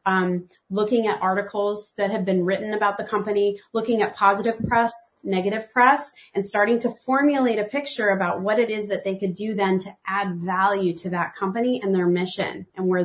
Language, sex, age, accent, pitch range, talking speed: English, female, 30-49, American, 185-220 Hz, 200 wpm